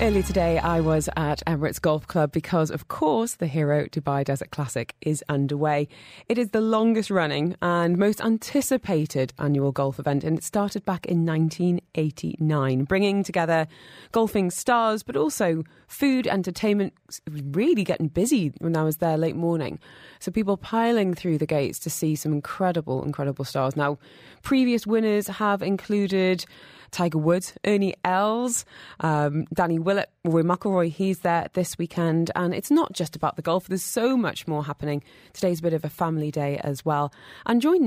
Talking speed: 165 wpm